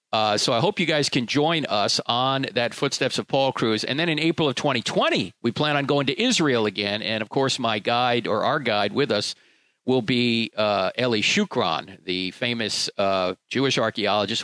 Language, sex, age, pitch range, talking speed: English, male, 50-69, 125-160 Hz, 200 wpm